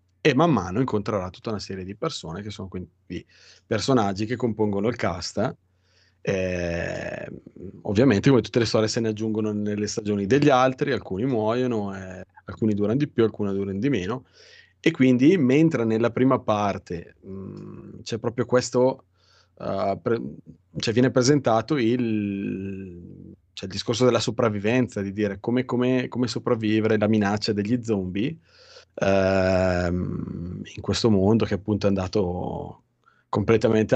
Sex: male